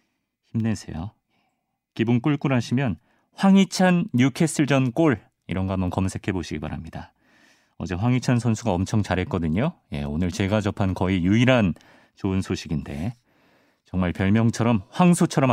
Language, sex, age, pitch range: Korean, male, 40-59, 95-145 Hz